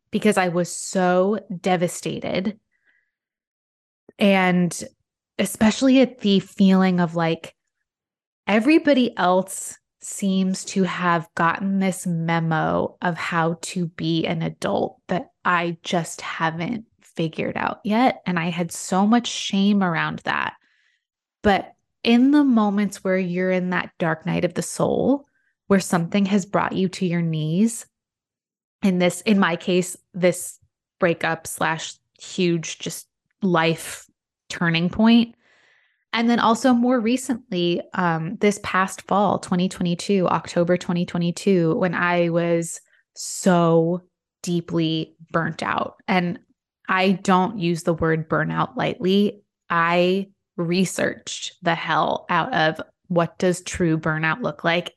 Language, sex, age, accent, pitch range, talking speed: English, female, 20-39, American, 170-200 Hz, 125 wpm